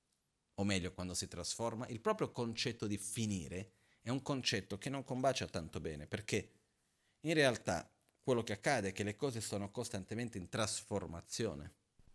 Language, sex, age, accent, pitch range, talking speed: Italian, male, 40-59, native, 90-115 Hz, 160 wpm